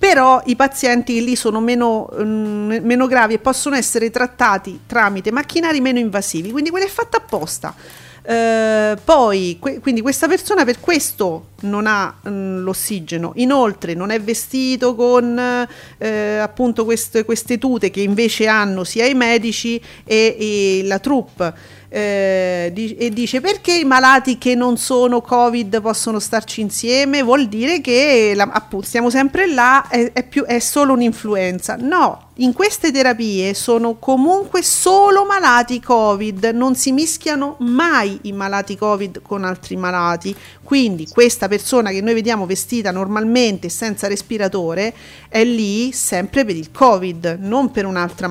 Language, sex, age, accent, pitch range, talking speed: Italian, female, 40-59, native, 205-265 Hz, 140 wpm